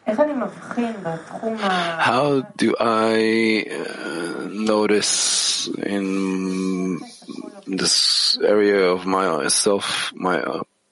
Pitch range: 95-130 Hz